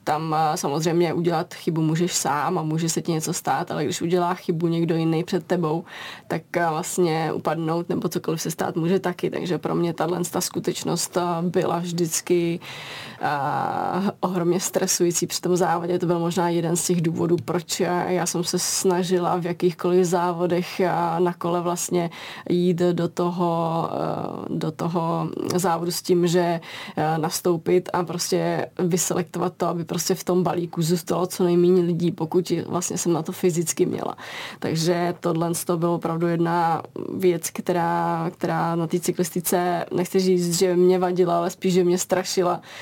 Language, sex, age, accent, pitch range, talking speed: Czech, female, 20-39, native, 170-180 Hz, 155 wpm